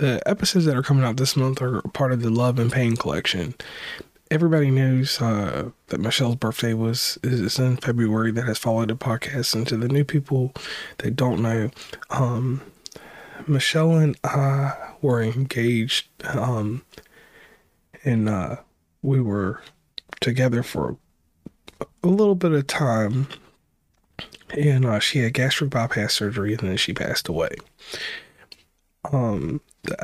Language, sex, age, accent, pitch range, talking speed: English, male, 20-39, American, 115-145 Hz, 140 wpm